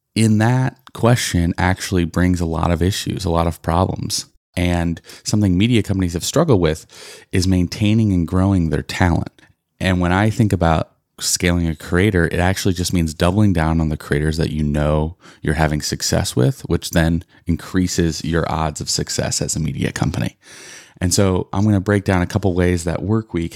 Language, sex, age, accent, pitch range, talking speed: English, male, 30-49, American, 80-95 Hz, 185 wpm